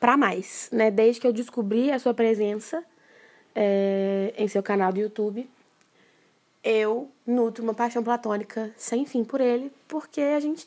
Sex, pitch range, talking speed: female, 205-245 Hz, 155 wpm